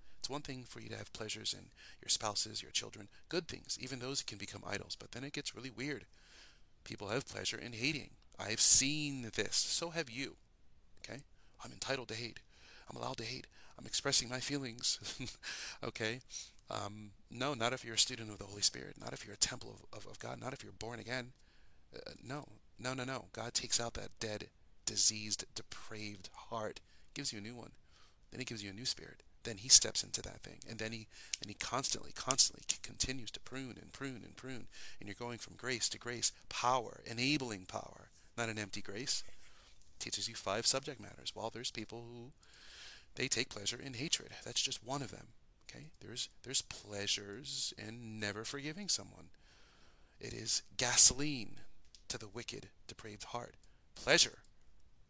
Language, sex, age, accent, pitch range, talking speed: English, male, 40-59, American, 105-130 Hz, 185 wpm